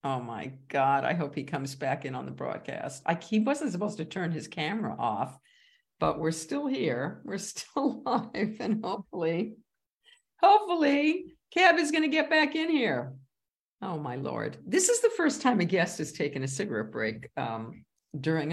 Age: 50-69